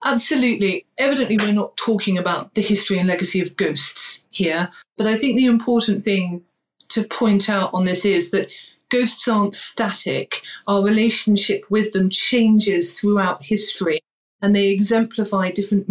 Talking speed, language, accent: 150 wpm, English, British